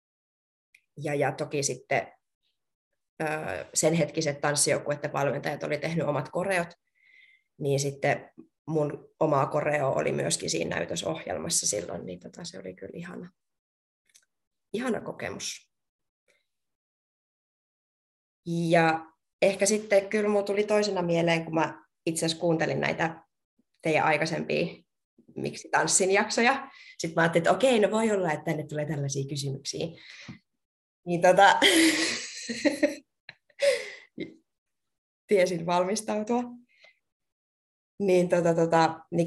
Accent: native